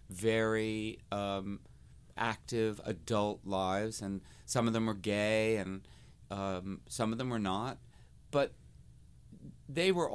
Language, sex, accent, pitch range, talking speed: English, male, American, 95-130 Hz, 125 wpm